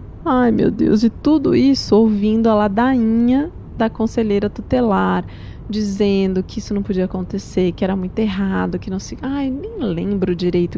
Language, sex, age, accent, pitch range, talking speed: Portuguese, female, 20-39, Brazilian, 180-245 Hz, 160 wpm